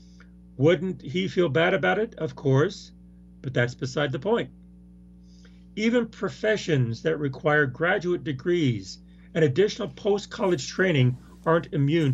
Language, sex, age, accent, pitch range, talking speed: English, male, 40-59, American, 110-170 Hz, 125 wpm